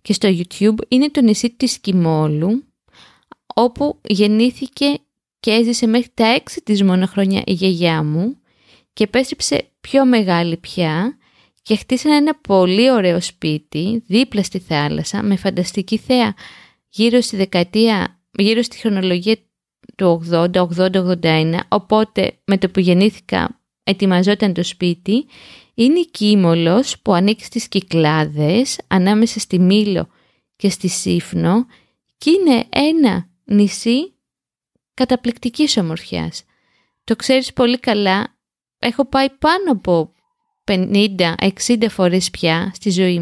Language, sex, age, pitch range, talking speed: Greek, female, 20-39, 185-250 Hz, 120 wpm